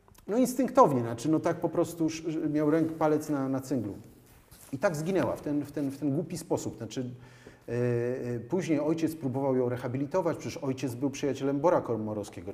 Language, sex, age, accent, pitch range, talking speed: Polish, male, 40-59, native, 120-150 Hz, 175 wpm